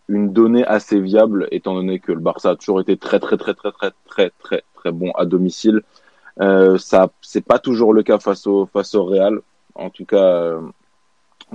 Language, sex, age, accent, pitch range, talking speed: French, male, 20-39, French, 95-110 Hz, 210 wpm